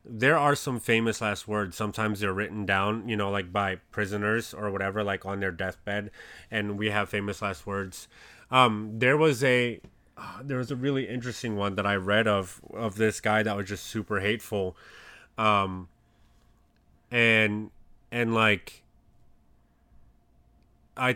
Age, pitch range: 30-49, 100-115 Hz